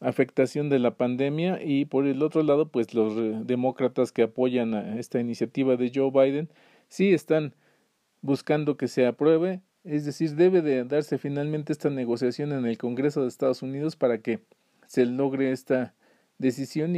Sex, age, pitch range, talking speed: male, 40-59, 125-155 Hz, 165 wpm